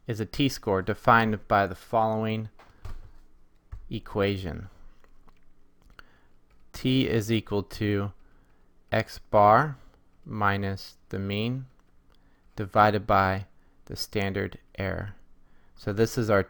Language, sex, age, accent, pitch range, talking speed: English, male, 30-49, American, 95-110 Hz, 95 wpm